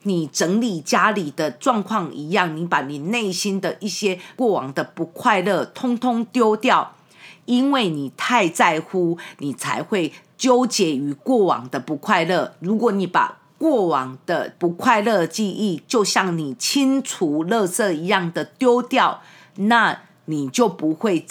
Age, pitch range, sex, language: 40-59, 165-225 Hz, female, English